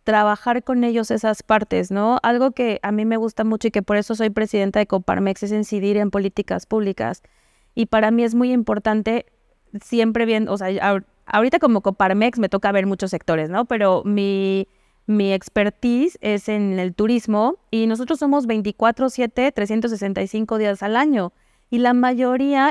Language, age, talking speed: Spanish, 20-39, 175 wpm